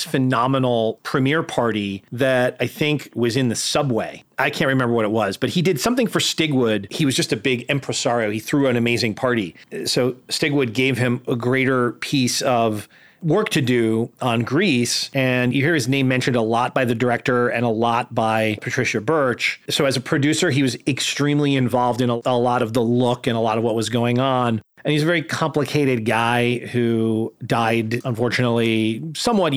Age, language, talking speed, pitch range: 40-59, English, 195 wpm, 120-145 Hz